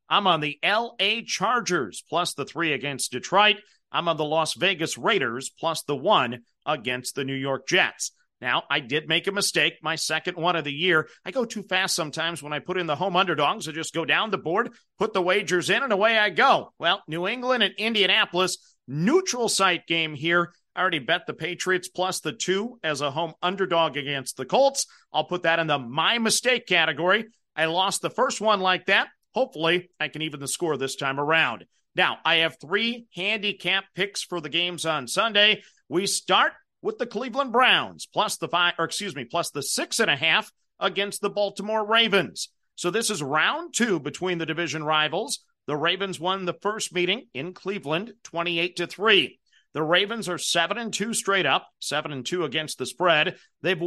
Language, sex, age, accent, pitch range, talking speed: English, male, 50-69, American, 160-200 Hz, 200 wpm